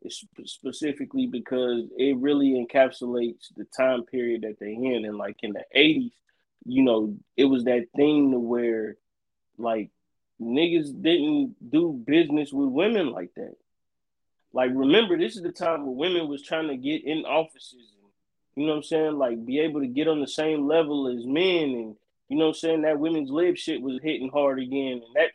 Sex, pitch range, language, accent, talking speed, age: male, 135-190 Hz, English, American, 190 wpm, 20-39